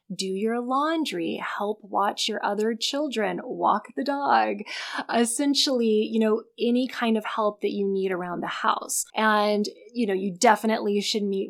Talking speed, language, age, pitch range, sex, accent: 160 wpm, English, 20-39, 190-225 Hz, female, American